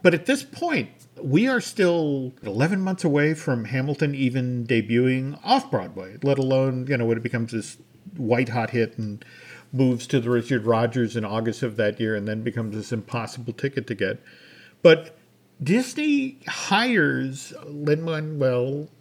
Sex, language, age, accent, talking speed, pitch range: male, English, 50-69, American, 150 wpm, 125-180 Hz